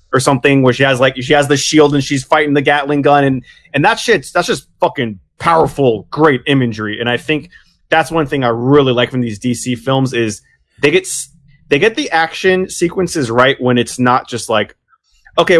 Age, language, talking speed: 20-39, English, 210 wpm